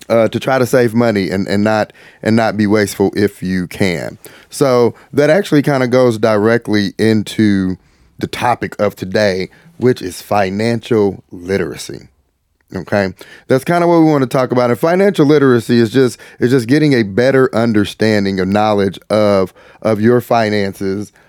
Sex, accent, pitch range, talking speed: male, American, 100-125 Hz, 165 wpm